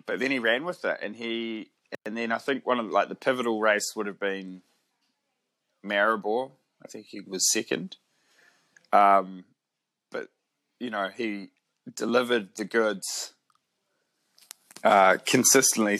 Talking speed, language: 140 wpm, English